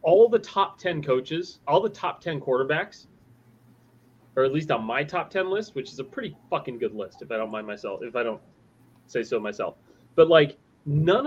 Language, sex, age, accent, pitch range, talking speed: English, male, 30-49, American, 120-150 Hz, 210 wpm